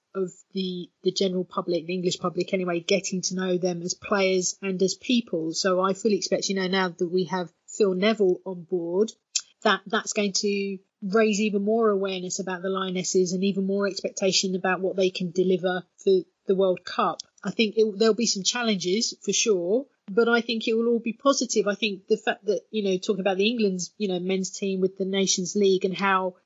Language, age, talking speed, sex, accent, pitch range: English, 30-49, 215 wpm, female, British, 185-215 Hz